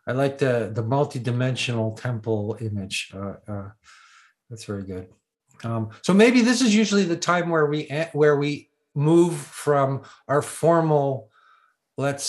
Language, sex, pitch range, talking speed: English, male, 115-140 Hz, 140 wpm